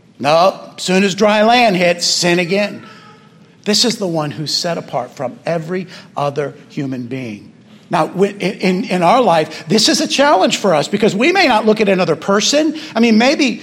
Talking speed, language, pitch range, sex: 190 wpm, English, 170-230 Hz, male